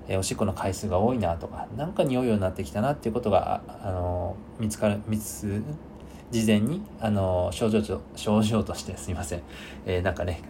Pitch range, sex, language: 90-125 Hz, male, Japanese